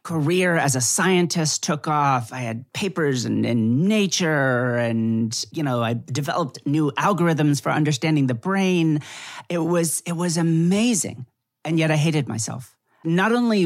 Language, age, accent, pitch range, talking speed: English, 40-59, American, 125-170 Hz, 155 wpm